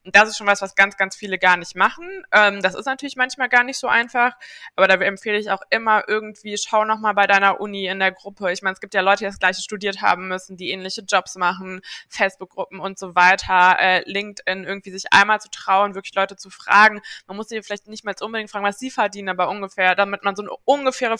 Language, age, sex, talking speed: German, 20-39, female, 240 wpm